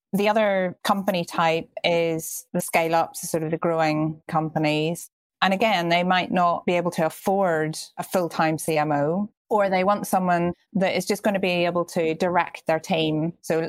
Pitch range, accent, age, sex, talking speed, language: 160-185 Hz, British, 30-49, female, 175 wpm, English